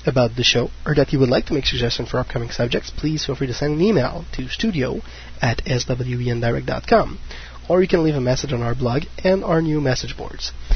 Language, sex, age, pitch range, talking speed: English, male, 20-39, 120-145 Hz, 220 wpm